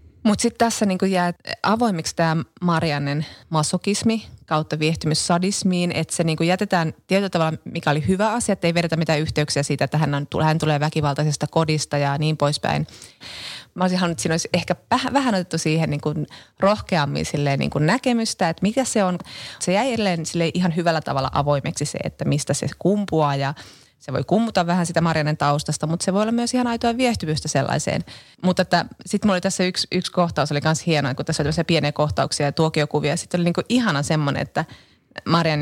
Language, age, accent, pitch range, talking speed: Finnish, 30-49, native, 150-190 Hz, 185 wpm